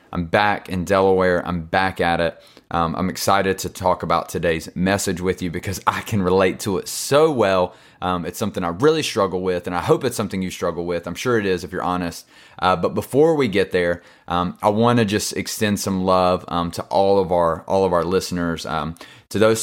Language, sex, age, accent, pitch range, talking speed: English, male, 30-49, American, 85-95 Hz, 225 wpm